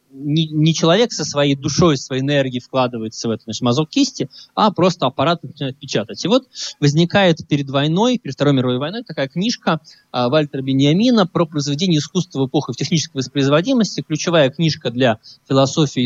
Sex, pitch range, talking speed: male, 130-170 Hz, 155 wpm